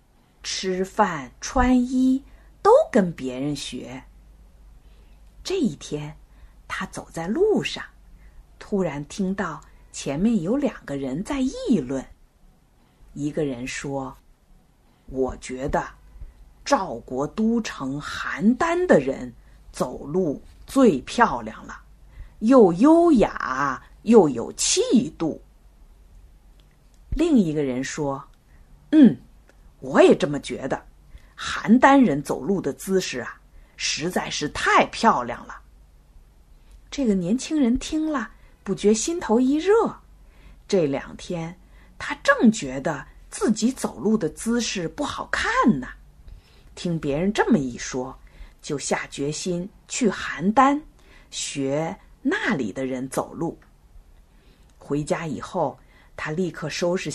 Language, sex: Chinese, female